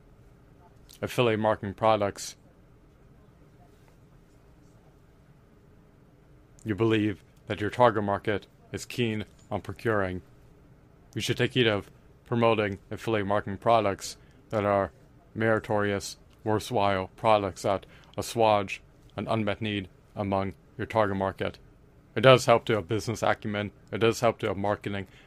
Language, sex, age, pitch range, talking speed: English, male, 30-49, 100-115 Hz, 115 wpm